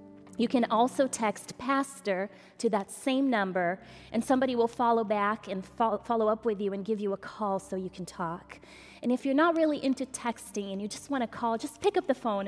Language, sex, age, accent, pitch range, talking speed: English, female, 20-39, American, 190-230 Hz, 220 wpm